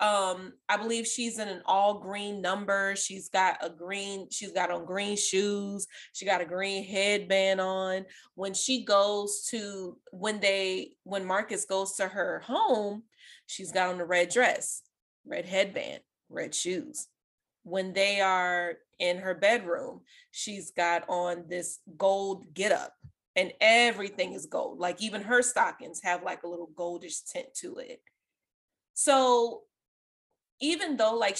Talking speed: 150 wpm